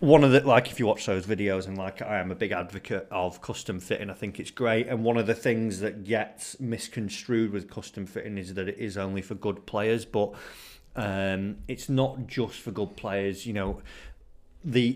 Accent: British